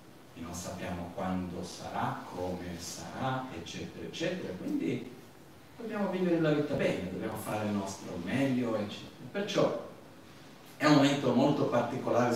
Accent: native